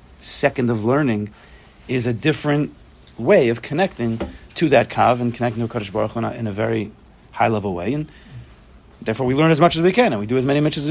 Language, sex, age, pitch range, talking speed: English, male, 40-59, 110-155 Hz, 215 wpm